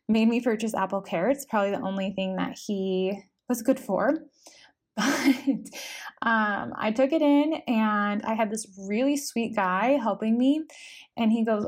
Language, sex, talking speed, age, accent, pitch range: English, female, 165 wpm, 20-39, American, 195-235 Hz